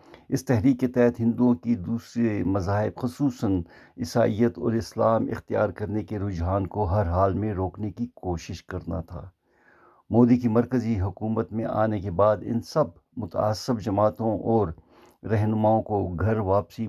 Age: 60-79